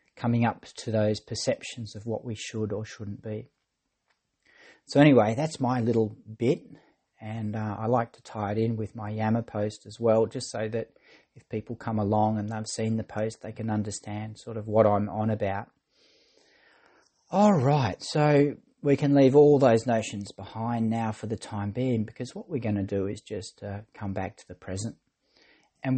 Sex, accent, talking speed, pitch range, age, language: male, Australian, 190 wpm, 100-120 Hz, 40-59, English